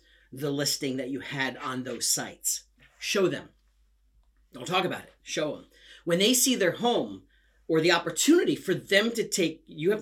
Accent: American